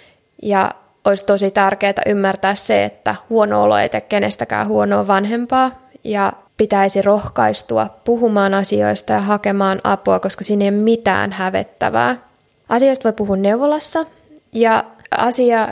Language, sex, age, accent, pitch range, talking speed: Finnish, female, 20-39, native, 190-220 Hz, 130 wpm